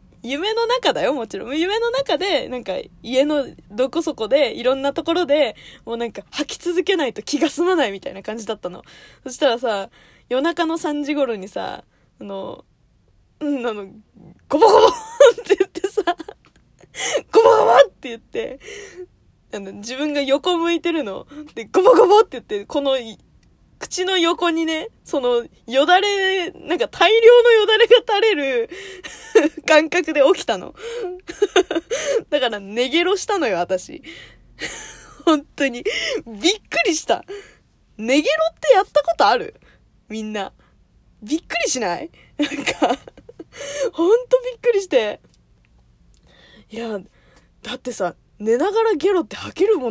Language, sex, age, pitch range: Japanese, female, 20-39, 240-395 Hz